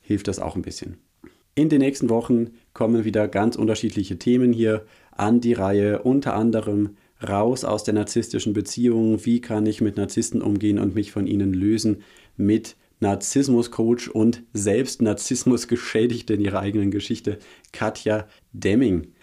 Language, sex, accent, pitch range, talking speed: German, male, German, 100-115 Hz, 145 wpm